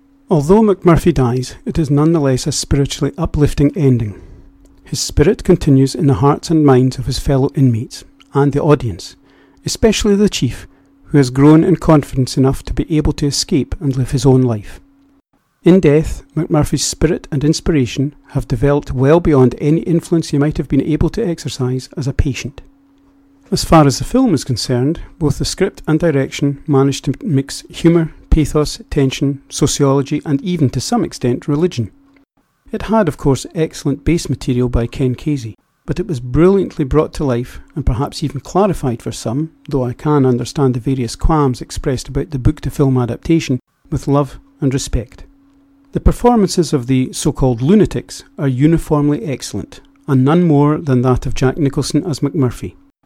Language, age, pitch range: English, 40-59, 130-165 Hz